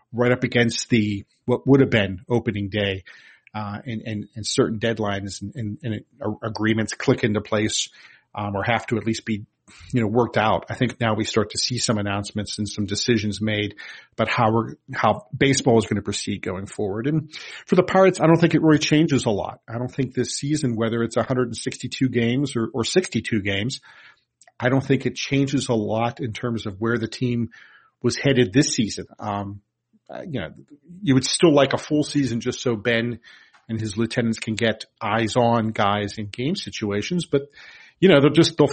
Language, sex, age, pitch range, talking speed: English, male, 40-59, 110-135 Hz, 205 wpm